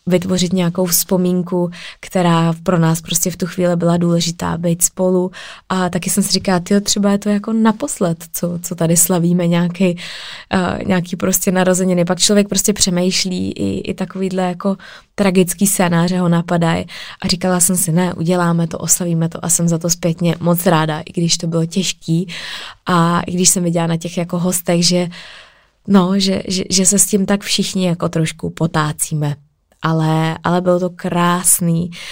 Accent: native